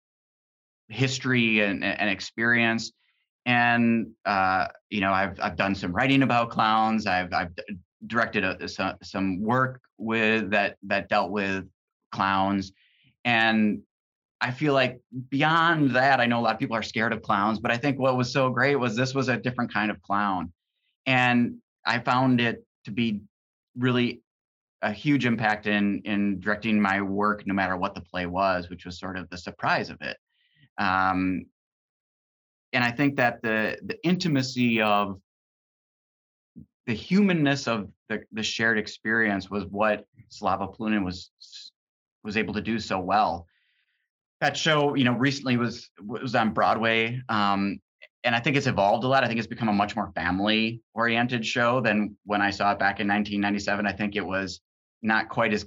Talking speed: 170 wpm